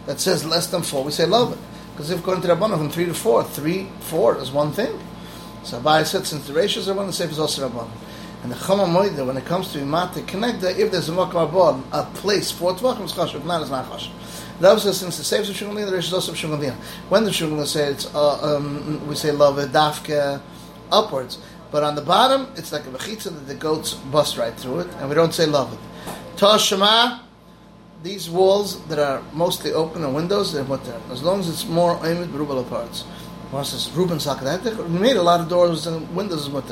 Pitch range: 150-190 Hz